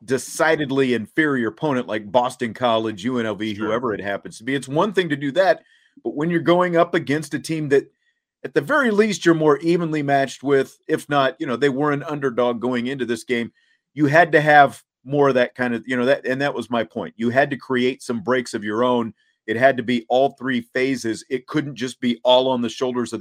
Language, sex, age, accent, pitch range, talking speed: English, male, 40-59, American, 120-150 Hz, 235 wpm